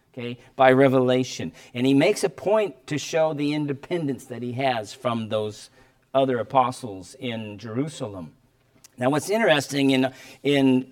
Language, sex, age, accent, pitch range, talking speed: English, male, 50-69, American, 130-145 Hz, 145 wpm